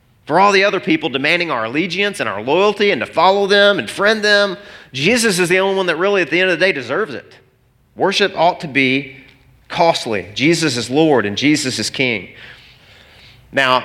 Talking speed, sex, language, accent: 200 wpm, male, English, American